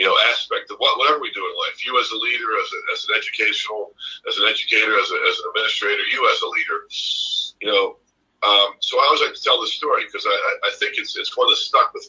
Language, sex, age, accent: English, male, 50-69, American